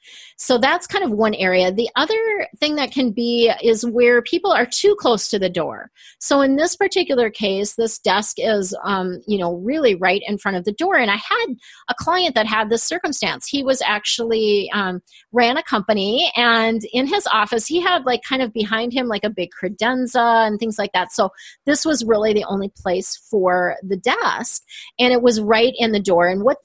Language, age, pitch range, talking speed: English, 30-49, 195-250 Hz, 210 wpm